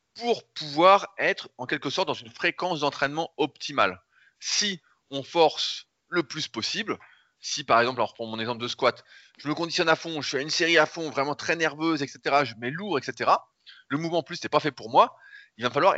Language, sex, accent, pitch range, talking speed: French, male, French, 115-160 Hz, 220 wpm